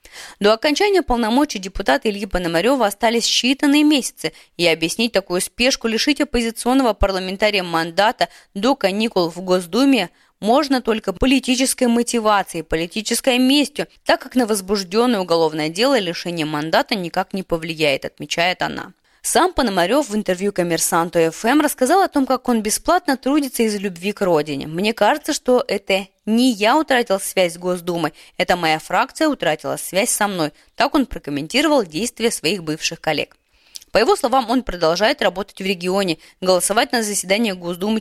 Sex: female